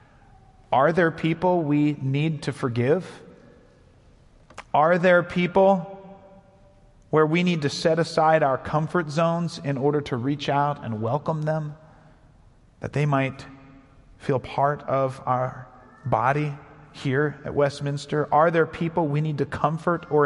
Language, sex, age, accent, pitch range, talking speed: English, male, 40-59, American, 125-165 Hz, 135 wpm